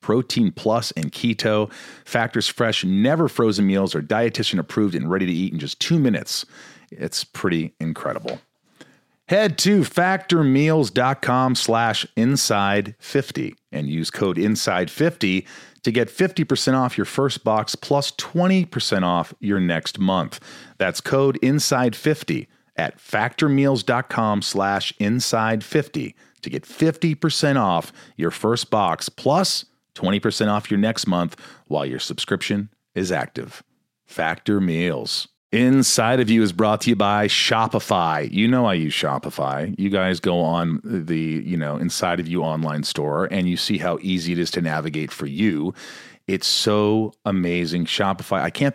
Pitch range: 90-135 Hz